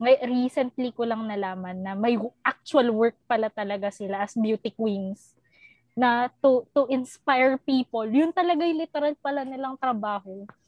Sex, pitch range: female, 220-280 Hz